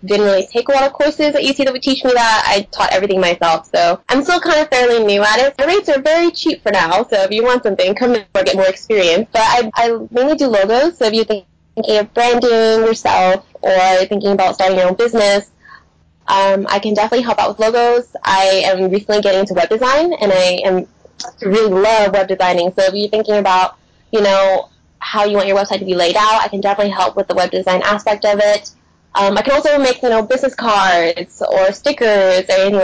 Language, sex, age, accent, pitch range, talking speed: English, female, 10-29, American, 185-235 Hz, 235 wpm